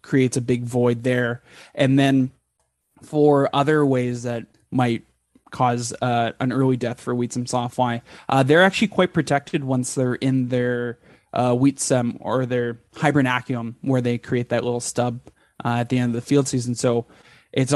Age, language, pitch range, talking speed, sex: 20-39, English, 125-140 Hz, 175 wpm, male